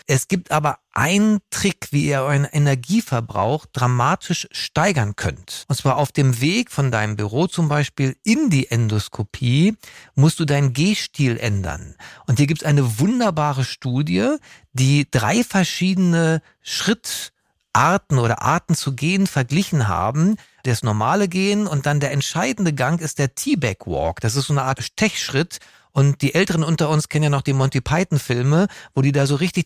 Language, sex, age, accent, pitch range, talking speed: German, male, 40-59, German, 135-180 Hz, 165 wpm